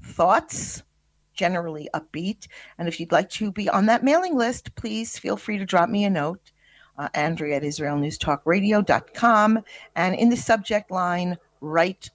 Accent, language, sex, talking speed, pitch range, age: American, English, female, 155 wpm, 155-225 Hz, 50-69